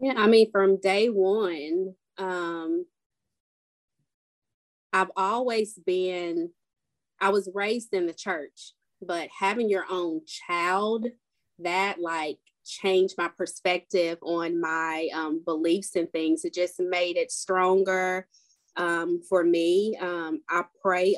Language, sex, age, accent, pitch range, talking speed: English, female, 20-39, American, 170-200 Hz, 120 wpm